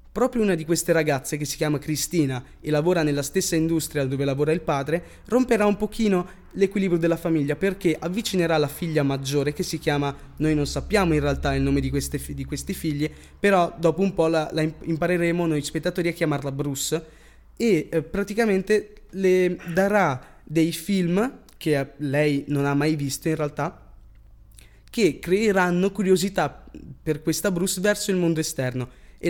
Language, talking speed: Italian, 170 wpm